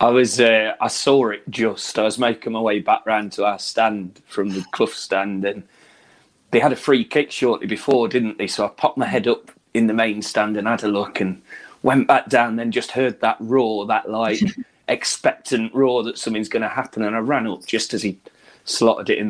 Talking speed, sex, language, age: 225 wpm, male, English, 30-49